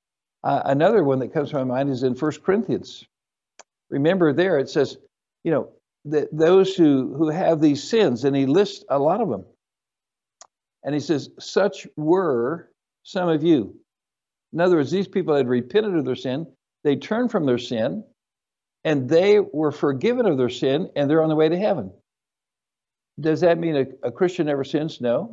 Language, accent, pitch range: English, American, 140-185 Hz